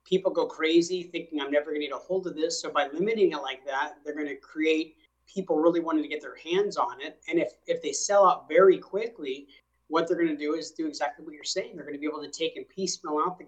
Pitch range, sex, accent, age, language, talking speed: 150-190 Hz, male, American, 30-49, English, 275 wpm